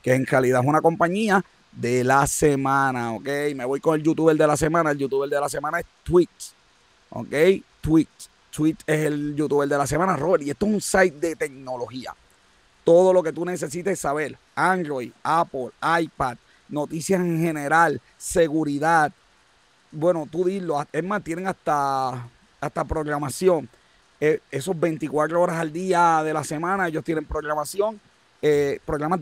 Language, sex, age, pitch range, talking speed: Spanish, male, 30-49, 145-175 Hz, 160 wpm